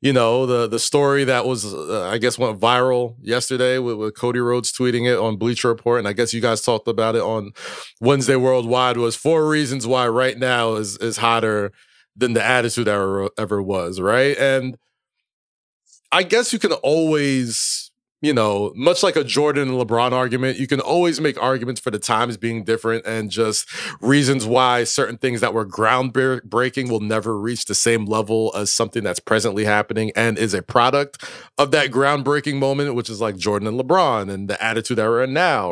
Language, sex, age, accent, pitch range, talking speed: English, male, 30-49, American, 115-145 Hz, 195 wpm